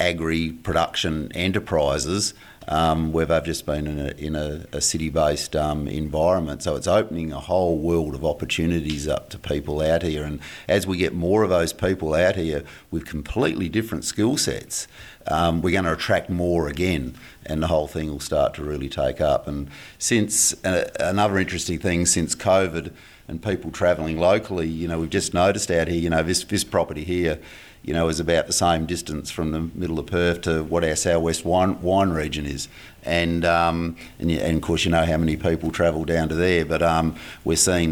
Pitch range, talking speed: 75-85 Hz, 200 wpm